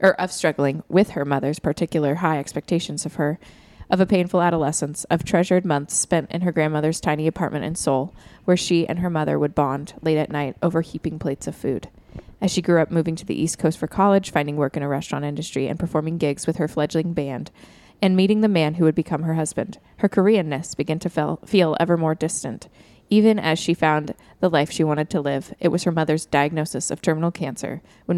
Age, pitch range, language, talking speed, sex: 20-39, 150-175 Hz, English, 215 wpm, female